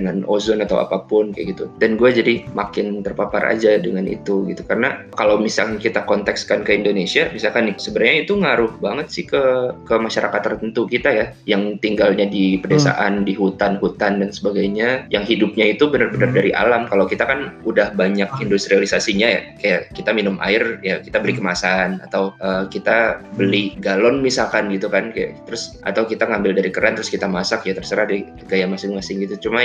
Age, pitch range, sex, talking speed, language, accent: 20-39, 100-115 Hz, male, 180 wpm, Indonesian, native